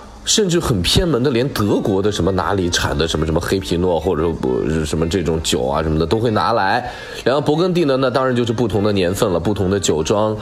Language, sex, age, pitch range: Chinese, male, 20-39, 90-130 Hz